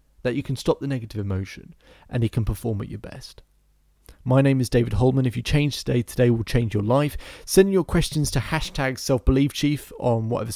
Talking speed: 215 wpm